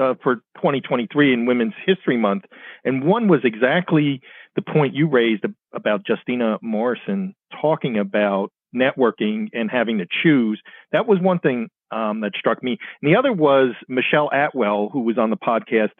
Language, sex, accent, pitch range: English, male, American, 115-150 Hz